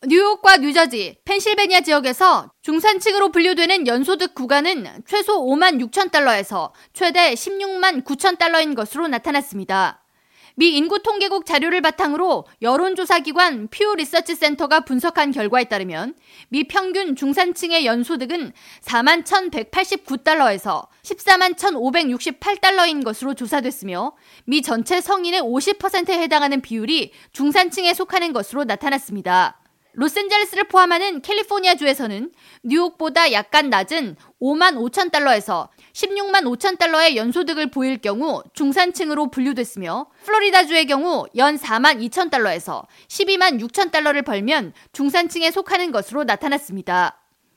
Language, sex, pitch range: Korean, female, 275-370 Hz